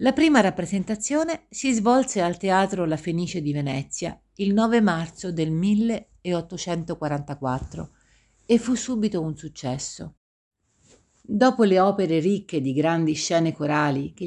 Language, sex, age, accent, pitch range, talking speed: Italian, female, 50-69, native, 150-195 Hz, 125 wpm